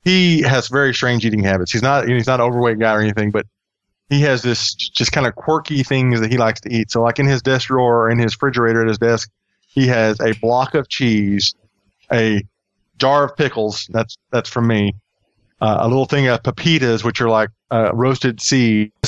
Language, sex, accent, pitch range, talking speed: English, male, American, 115-145 Hz, 210 wpm